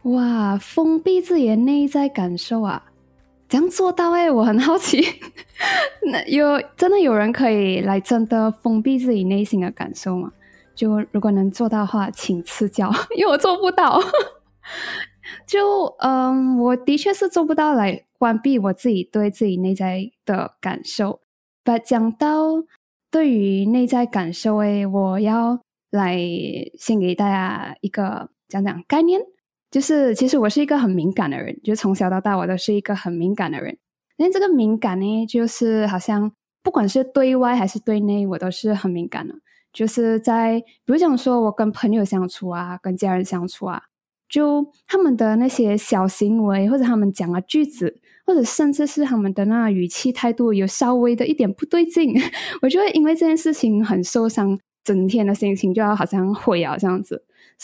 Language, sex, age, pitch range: Chinese, female, 10-29, 200-280 Hz